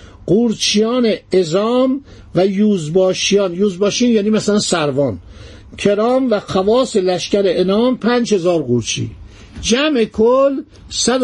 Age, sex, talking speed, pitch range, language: 60-79, male, 95 wpm, 175-230 Hz, Persian